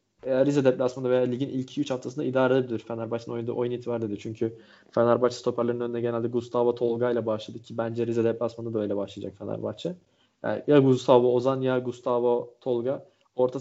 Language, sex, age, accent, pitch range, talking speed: Turkish, male, 20-39, native, 120-140 Hz, 170 wpm